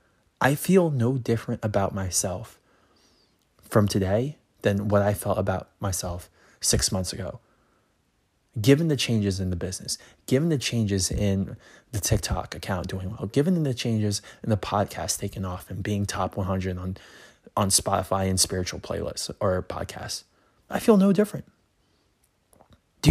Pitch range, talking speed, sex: 95-125 Hz, 150 wpm, male